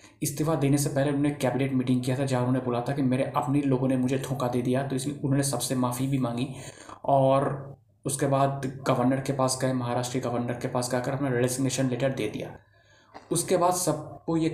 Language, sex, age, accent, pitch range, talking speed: Hindi, male, 20-39, native, 125-145 Hz, 210 wpm